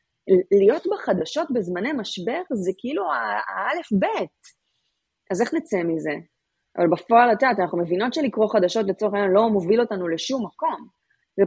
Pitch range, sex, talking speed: 185-260 Hz, female, 150 wpm